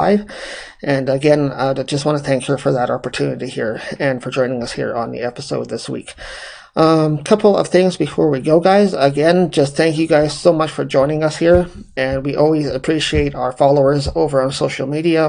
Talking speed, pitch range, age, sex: 200 wpm, 135-165 Hz, 30-49, male